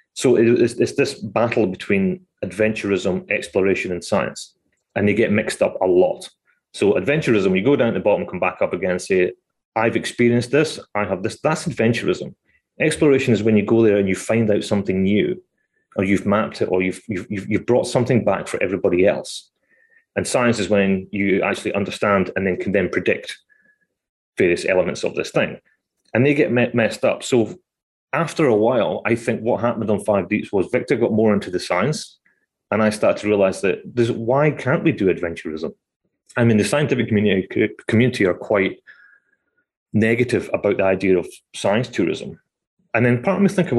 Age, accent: 30-49, British